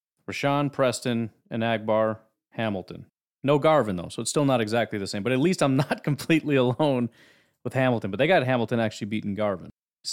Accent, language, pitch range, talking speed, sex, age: American, English, 105-130 Hz, 190 wpm, male, 30-49